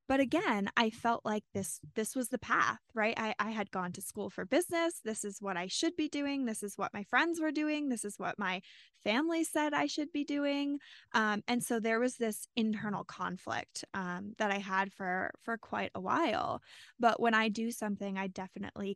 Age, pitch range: 10-29, 200-240 Hz